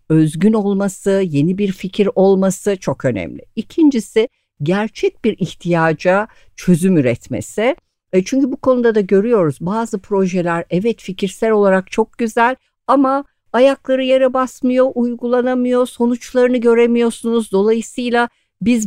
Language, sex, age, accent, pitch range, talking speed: Turkish, female, 60-79, native, 170-235 Hz, 115 wpm